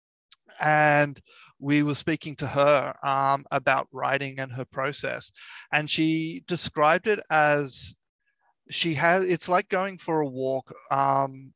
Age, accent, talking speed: 30-49, Australian, 135 wpm